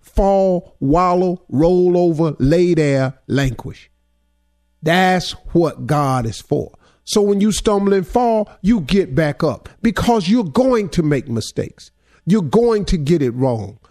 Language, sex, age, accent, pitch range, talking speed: English, male, 50-69, American, 120-185 Hz, 145 wpm